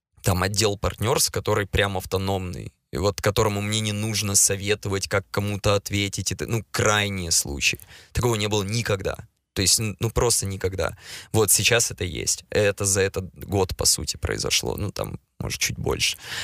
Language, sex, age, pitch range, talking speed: Ukrainian, male, 20-39, 95-110 Hz, 165 wpm